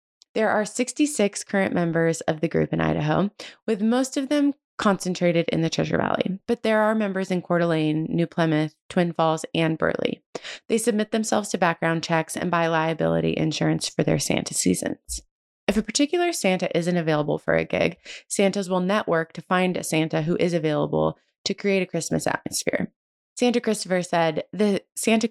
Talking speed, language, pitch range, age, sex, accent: 180 wpm, English, 165-215 Hz, 20-39, female, American